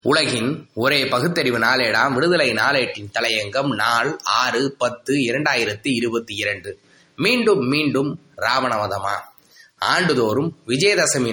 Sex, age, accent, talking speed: male, 20-39, native, 95 wpm